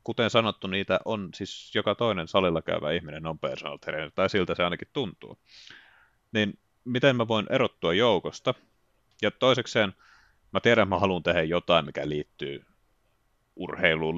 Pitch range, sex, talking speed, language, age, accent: 90-110 Hz, male, 145 wpm, Finnish, 30-49, native